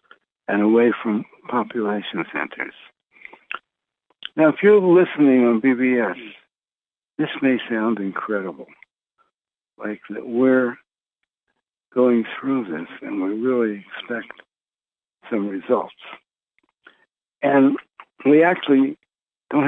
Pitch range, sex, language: 110-145 Hz, male, English